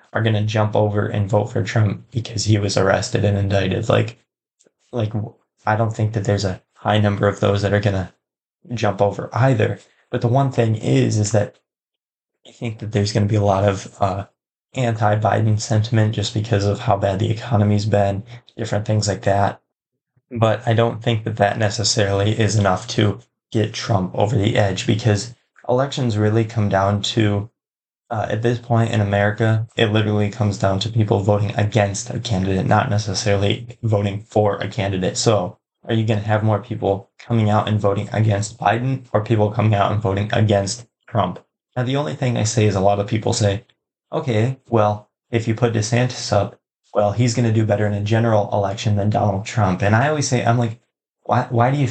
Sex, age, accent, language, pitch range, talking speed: male, 20-39, American, English, 100-120 Hz, 195 wpm